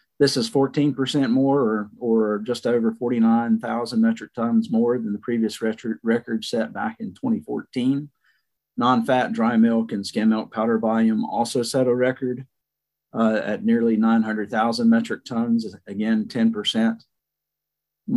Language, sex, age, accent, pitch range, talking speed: English, male, 50-69, American, 110-135 Hz, 135 wpm